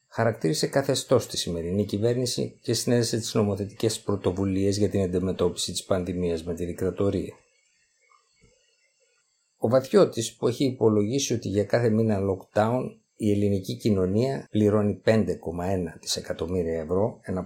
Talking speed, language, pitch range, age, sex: 125 wpm, Greek, 90-125 Hz, 50-69, male